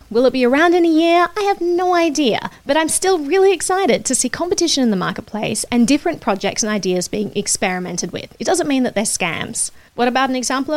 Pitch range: 200-285 Hz